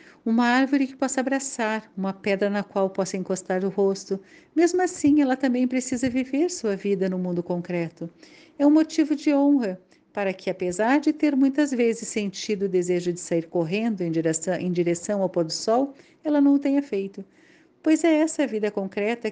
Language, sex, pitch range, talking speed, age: Portuguese, female, 195-285 Hz, 185 wpm, 50-69